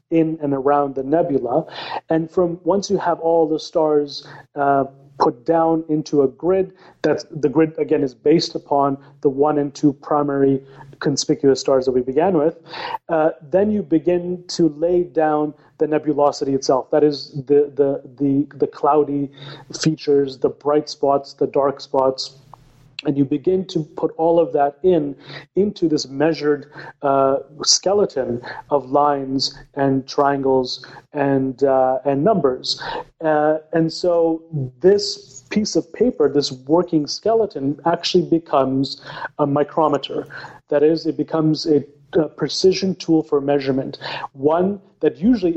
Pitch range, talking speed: 140-165 Hz, 145 wpm